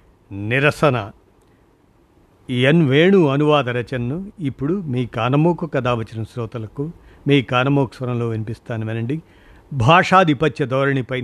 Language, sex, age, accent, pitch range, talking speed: Telugu, male, 50-69, native, 115-160 Hz, 80 wpm